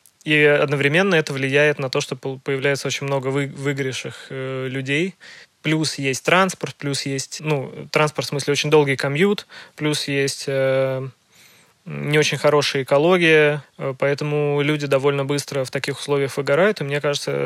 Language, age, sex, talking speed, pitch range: Russian, 20-39, male, 150 wpm, 135-150 Hz